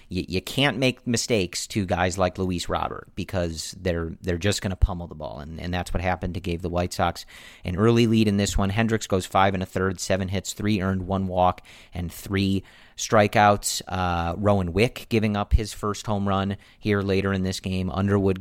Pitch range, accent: 90-105 Hz, American